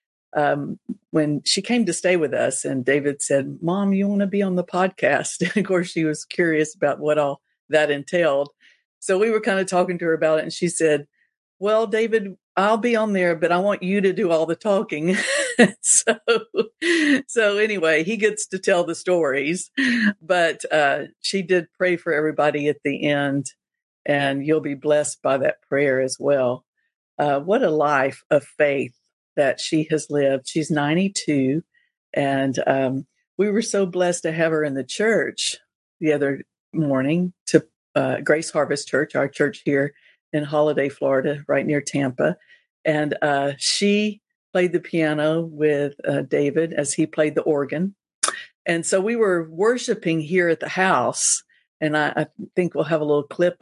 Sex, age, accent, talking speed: female, 60-79, American, 180 wpm